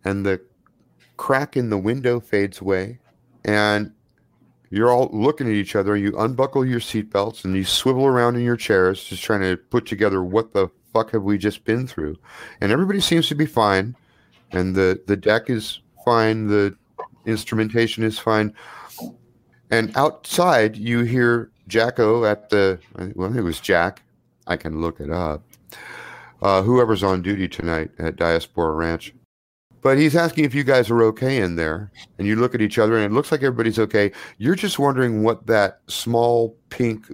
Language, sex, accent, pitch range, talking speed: English, male, American, 95-120 Hz, 180 wpm